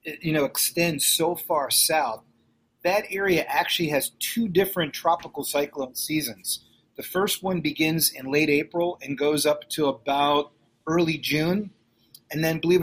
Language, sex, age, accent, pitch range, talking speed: English, male, 40-59, American, 140-170 Hz, 150 wpm